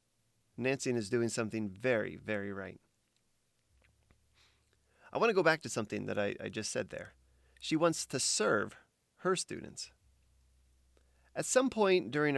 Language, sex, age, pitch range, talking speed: English, male, 30-49, 105-155 Hz, 145 wpm